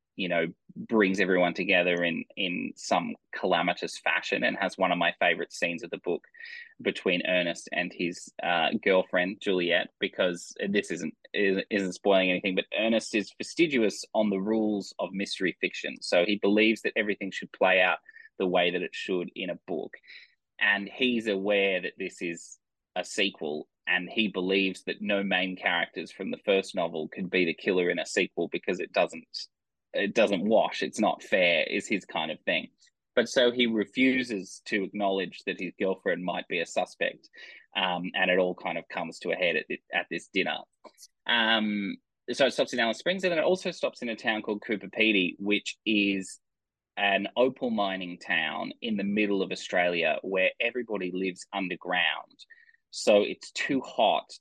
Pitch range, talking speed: 95-120 Hz, 180 wpm